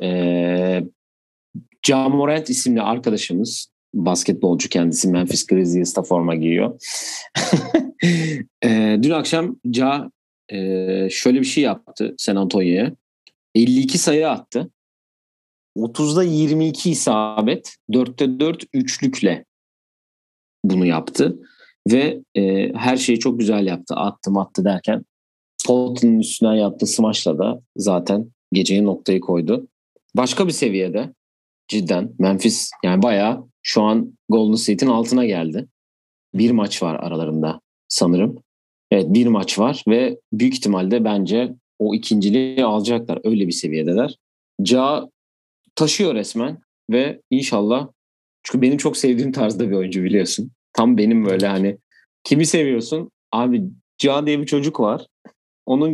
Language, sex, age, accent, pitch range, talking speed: Turkish, male, 40-59, native, 95-135 Hz, 120 wpm